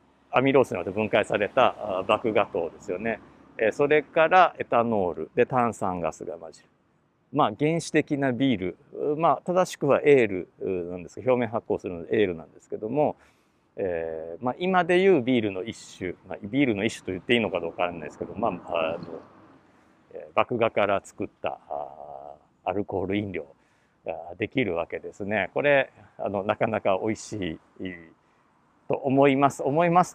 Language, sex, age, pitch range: Japanese, male, 50-69, 105-180 Hz